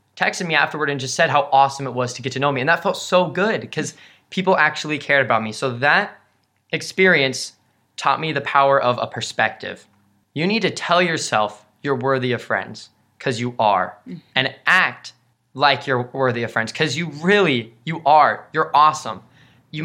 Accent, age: American, 20-39